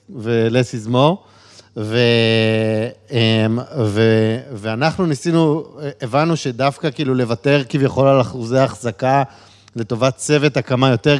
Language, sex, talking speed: Hebrew, male, 95 wpm